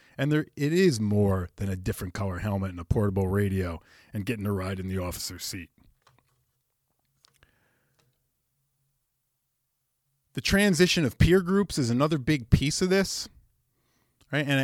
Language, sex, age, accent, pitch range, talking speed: English, male, 30-49, American, 95-130 Hz, 145 wpm